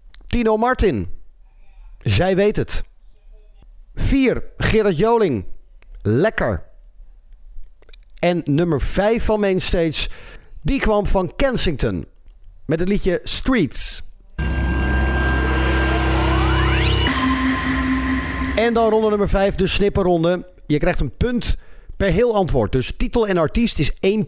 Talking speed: 105 wpm